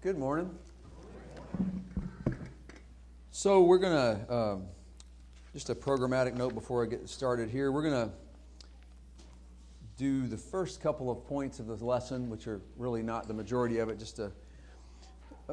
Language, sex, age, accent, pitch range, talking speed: English, male, 40-59, American, 100-135 Hz, 140 wpm